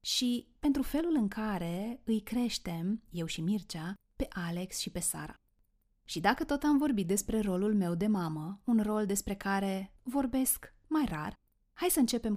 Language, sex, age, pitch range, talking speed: Romanian, female, 30-49, 185-245 Hz, 170 wpm